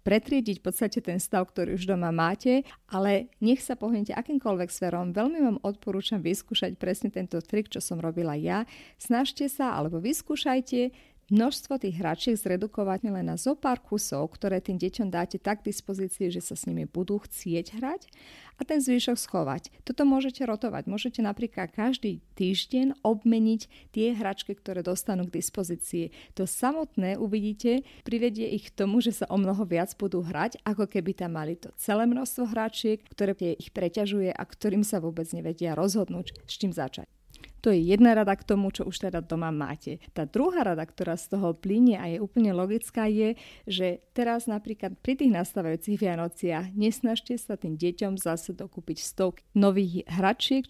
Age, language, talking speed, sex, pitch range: 40-59, Slovak, 170 wpm, female, 180-235 Hz